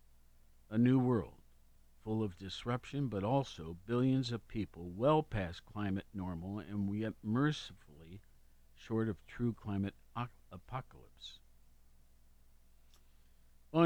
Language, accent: English, American